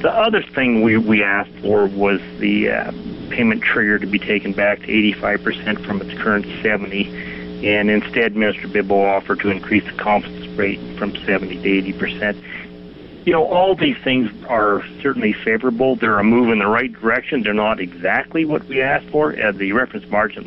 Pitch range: 95-105 Hz